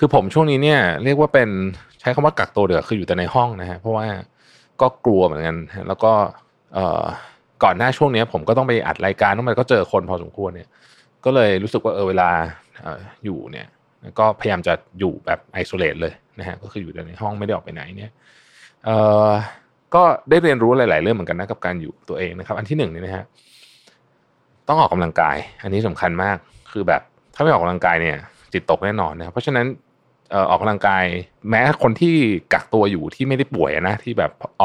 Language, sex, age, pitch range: Thai, male, 20-39, 95-115 Hz